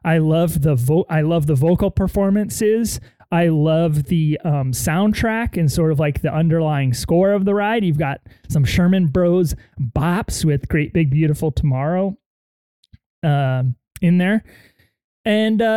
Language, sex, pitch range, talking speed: English, male, 145-180 Hz, 150 wpm